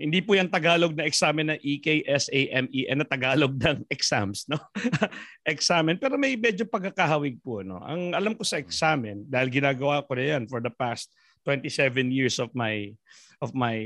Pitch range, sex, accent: 120-160 Hz, male, native